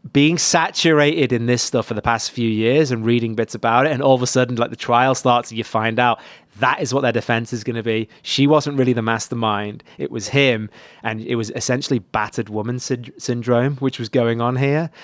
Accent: British